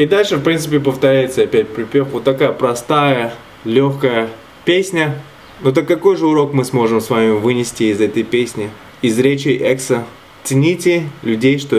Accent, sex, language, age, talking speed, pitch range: native, male, Russian, 20-39, 160 wpm, 105-135 Hz